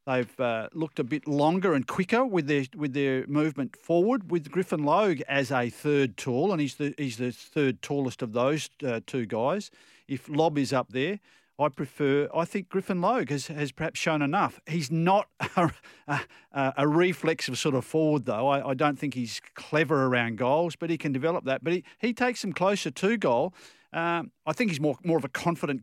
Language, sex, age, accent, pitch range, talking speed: English, male, 50-69, Australian, 130-170 Hz, 210 wpm